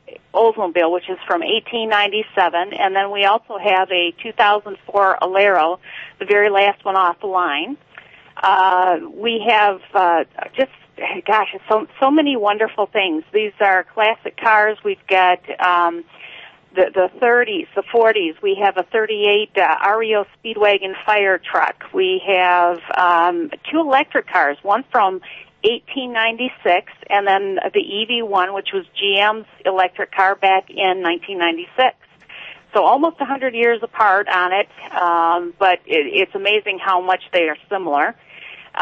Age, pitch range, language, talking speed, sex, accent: 50-69, 185-230 Hz, English, 140 wpm, female, American